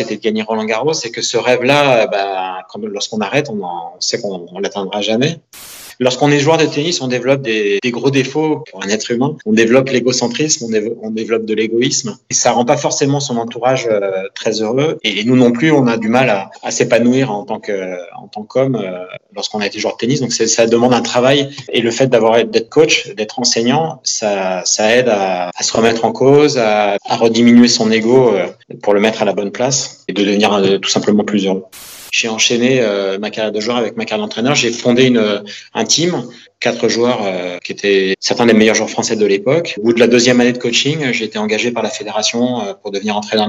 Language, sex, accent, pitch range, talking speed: French, male, French, 105-130 Hz, 225 wpm